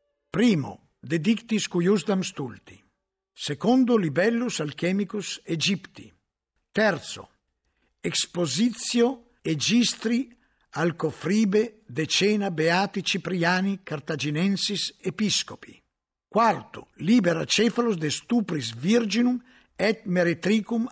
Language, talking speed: Italian, 75 wpm